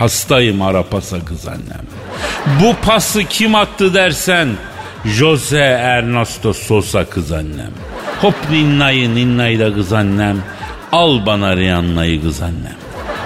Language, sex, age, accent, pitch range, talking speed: Turkish, male, 60-79, native, 120-200 Hz, 105 wpm